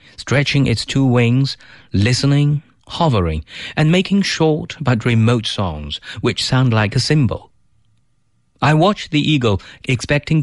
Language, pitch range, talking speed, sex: English, 110-140 Hz, 125 wpm, male